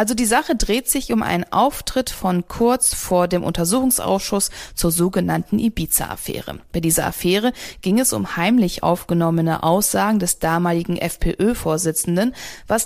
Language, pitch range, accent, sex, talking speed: German, 160-220 Hz, German, female, 135 wpm